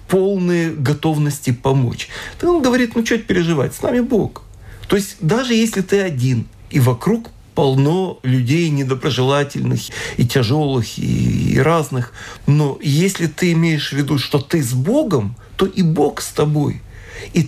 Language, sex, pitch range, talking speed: Russian, male, 130-180 Hz, 150 wpm